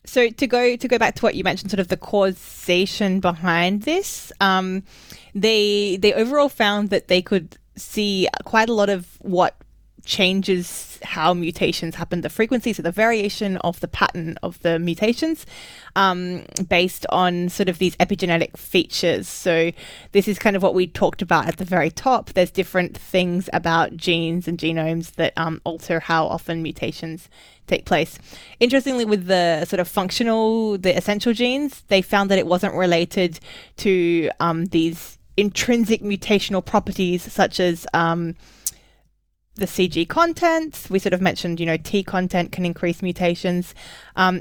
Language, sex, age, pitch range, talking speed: English, female, 20-39, 175-205 Hz, 160 wpm